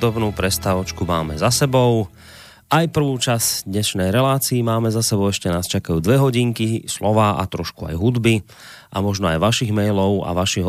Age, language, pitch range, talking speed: 30-49, Slovak, 85-105 Hz, 165 wpm